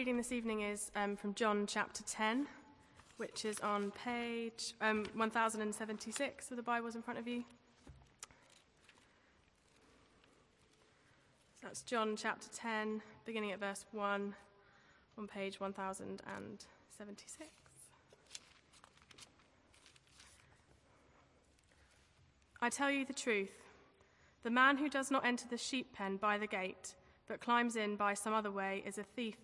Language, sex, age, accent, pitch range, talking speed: English, female, 20-39, British, 205-240 Hz, 125 wpm